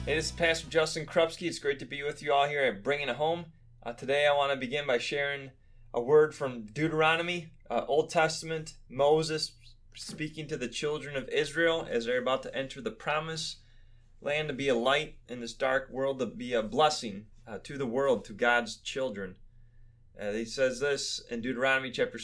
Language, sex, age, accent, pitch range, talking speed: English, male, 20-39, American, 115-150 Hz, 200 wpm